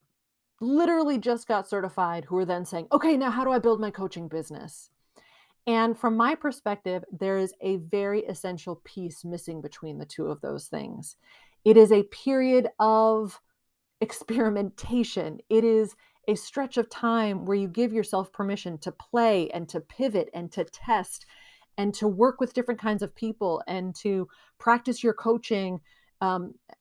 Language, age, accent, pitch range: English, 30-49, American, 185-240 Hz